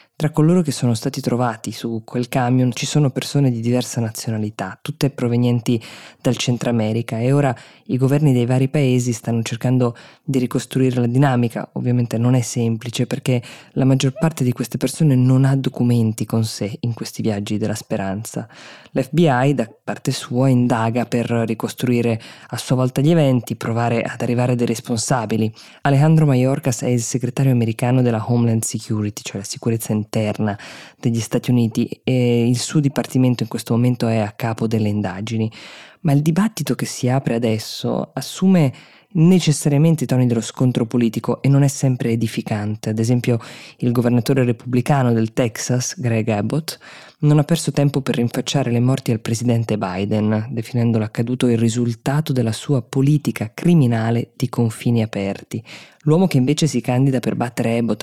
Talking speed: 160 wpm